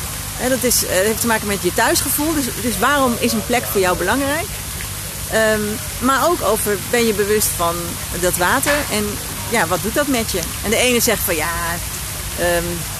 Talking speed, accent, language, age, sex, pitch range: 195 wpm, Dutch, Dutch, 40-59, female, 200-265 Hz